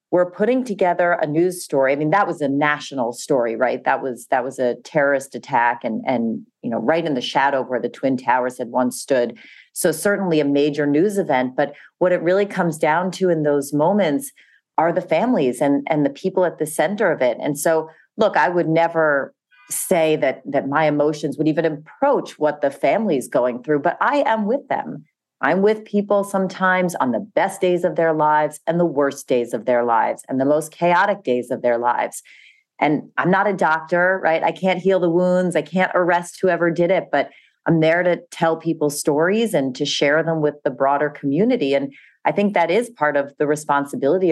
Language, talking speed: English, 210 wpm